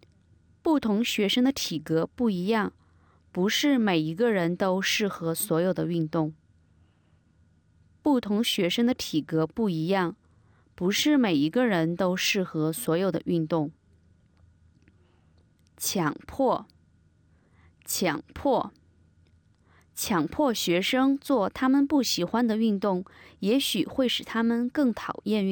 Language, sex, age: English, female, 20-39